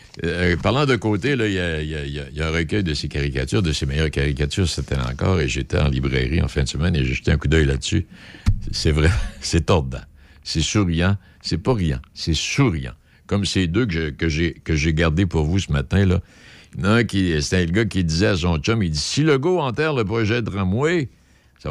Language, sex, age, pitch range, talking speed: French, male, 60-79, 80-130 Hz, 225 wpm